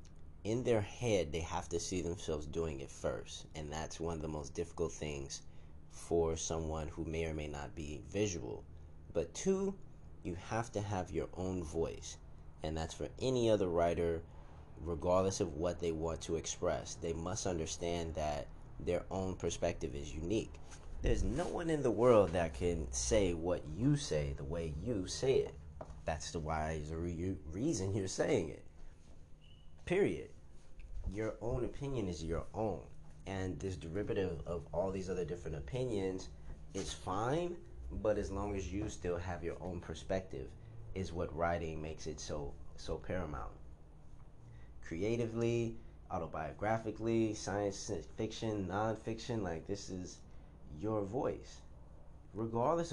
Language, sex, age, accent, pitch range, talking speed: English, male, 30-49, American, 80-100 Hz, 145 wpm